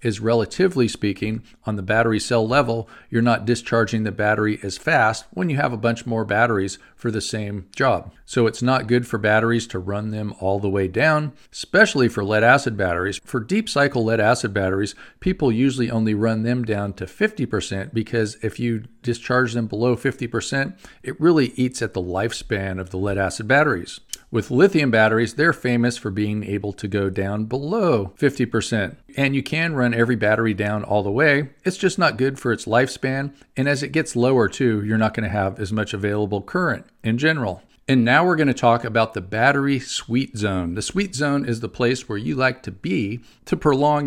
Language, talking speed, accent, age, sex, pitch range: English, 200 wpm, American, 50-69, male, 105-130 Hz